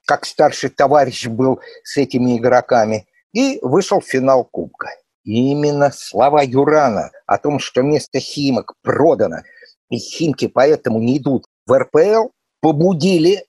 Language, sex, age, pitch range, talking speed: Russian, male, 50-69, 135-220 Hz, 130 wpm